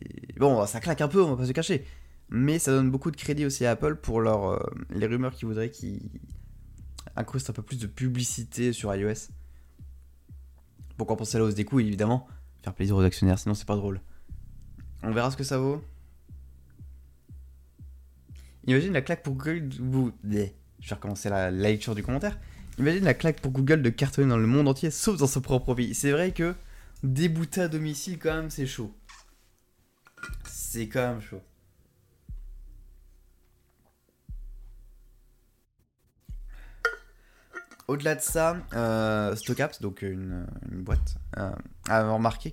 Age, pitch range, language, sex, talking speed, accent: 20-39, 95-135 Hz, French, male, 160 wpm, French